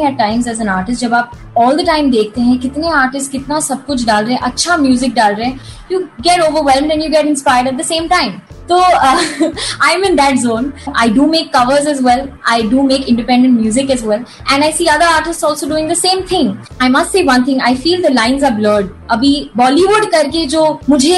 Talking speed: 205 wpm